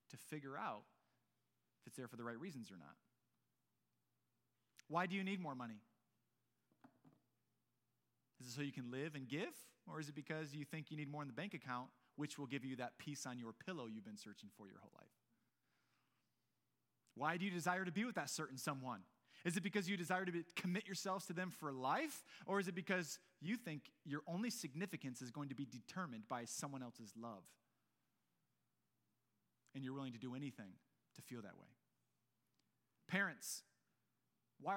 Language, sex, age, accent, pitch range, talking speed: English, male, 30-49, American, 120-170 Hz, 185 wpm